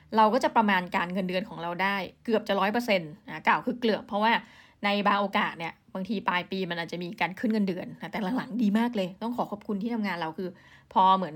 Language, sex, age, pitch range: Thai, female, 20-39, 190-235 Hz